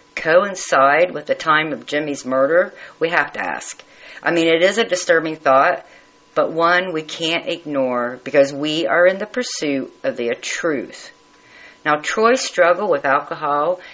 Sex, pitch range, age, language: female, 145-200 Hz, 50-69, English